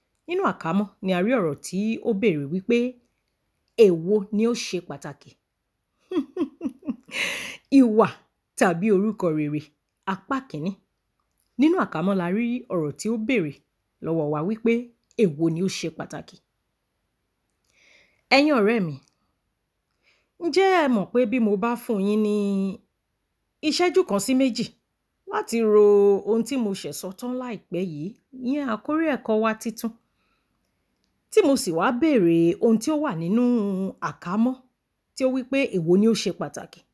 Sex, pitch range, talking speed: female, 185-265 Hz, 125 wpm